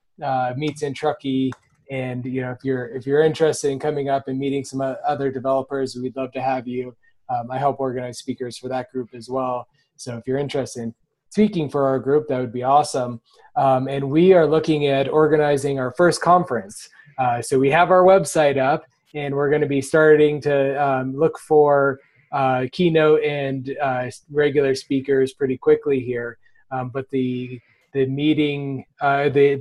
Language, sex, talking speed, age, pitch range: English, male, 185 wpm, 20-39, 125-150 Hz